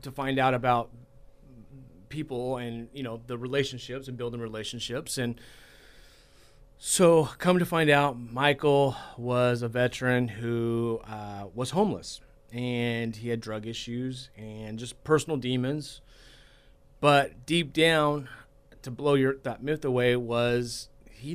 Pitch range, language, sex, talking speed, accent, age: 125-150 Hz, English, male, 130 wpm, American, 30-49